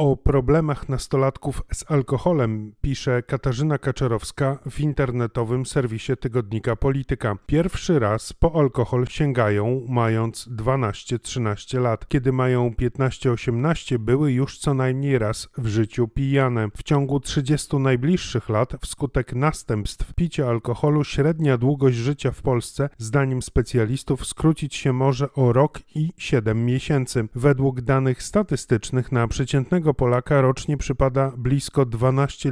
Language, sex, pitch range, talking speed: Polish, male, 120-140 Hz, 125 wpm